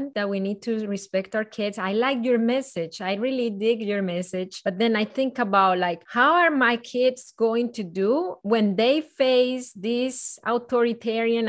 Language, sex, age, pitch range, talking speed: English, female, 20-39, 195-245 Hz, 180 wpm